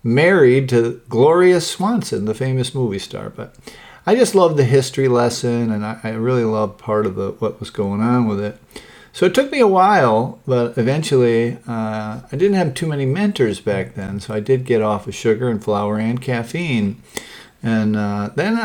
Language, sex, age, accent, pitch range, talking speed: English, male, 50-69, American, 110-140 Hz, 195 wpm